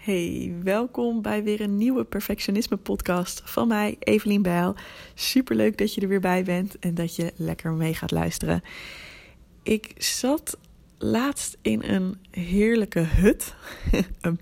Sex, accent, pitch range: female, Dutch, 165-210 Hz